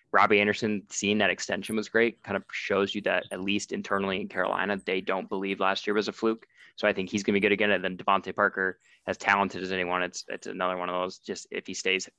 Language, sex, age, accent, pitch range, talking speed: English, male, 20-39, American, 95-105 Hz, 255 wpm